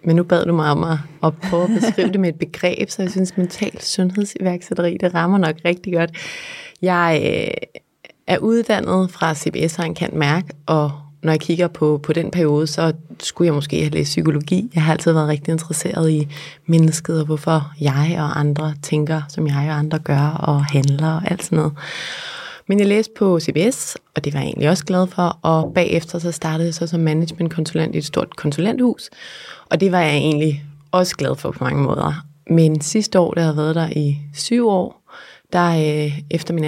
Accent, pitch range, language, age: native, 155-175 Hz, Danish, 20-39